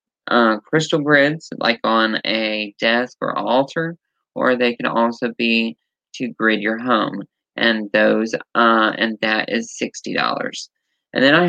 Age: 20-39